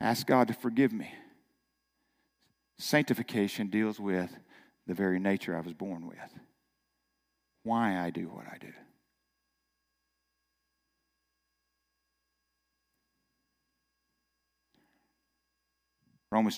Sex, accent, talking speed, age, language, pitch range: male, American, 80 wpm, 50-69, English, 85-115 Hz